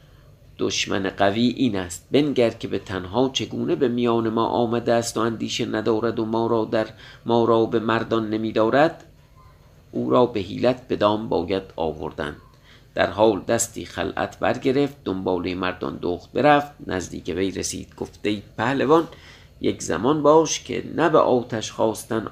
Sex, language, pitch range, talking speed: male, Persian, 105-130 Hz, 155 wpm